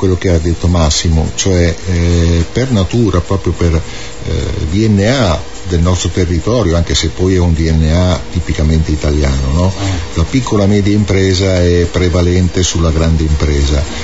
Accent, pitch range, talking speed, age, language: native, 80-100 Hz, 140 wpm, 50-69, Italian